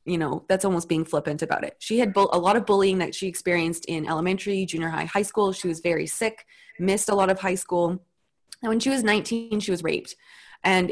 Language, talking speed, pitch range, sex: English, 230 wpm, 175-220 Hz, female